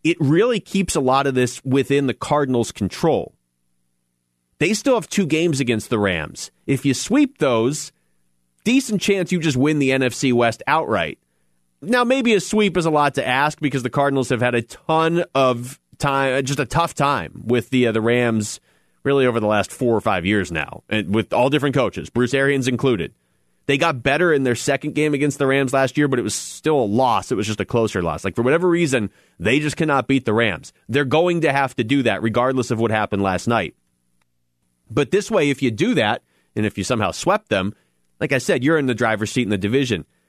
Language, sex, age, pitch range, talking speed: English, male, 30-49, 105-145 Hz, 220 wpm